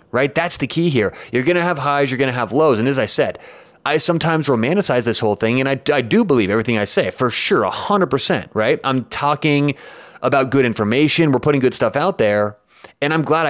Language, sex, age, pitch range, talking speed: English, male, 30-49, 120-160 Hz, 235 wpm